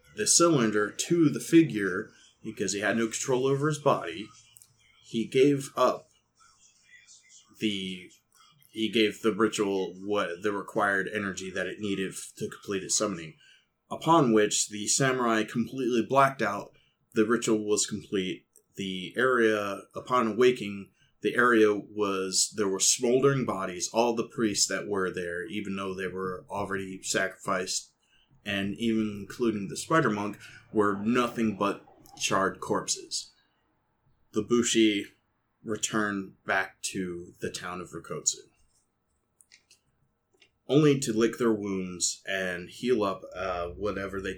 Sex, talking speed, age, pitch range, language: male, 135 wpm, 20-39, 95-120 Hz, English